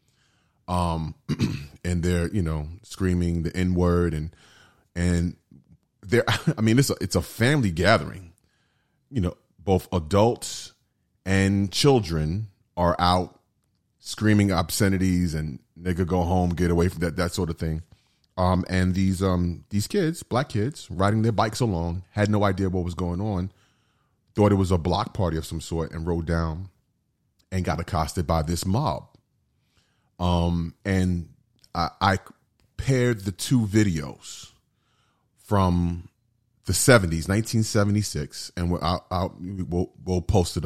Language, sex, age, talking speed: English, male, 30-49, 145 wpm